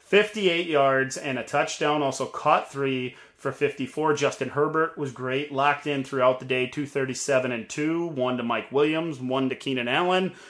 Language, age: English, 30-49